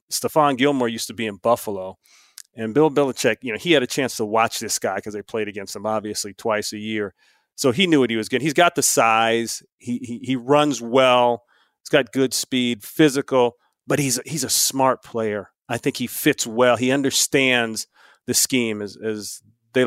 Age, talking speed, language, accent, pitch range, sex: 40-59, 205 wpm, English, American, 110-140 Hz, male